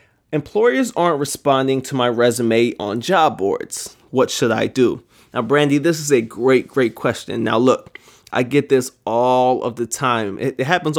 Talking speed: 175 wpm